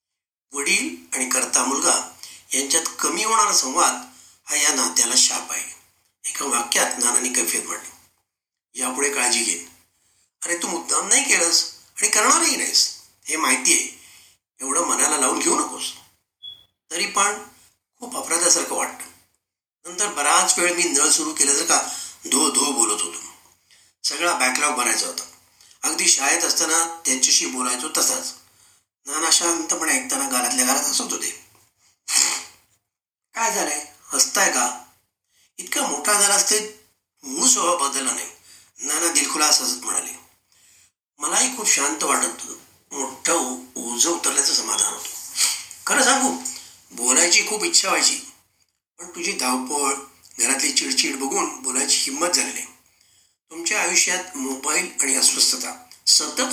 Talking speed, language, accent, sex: 100 wpm, Marathi, native, male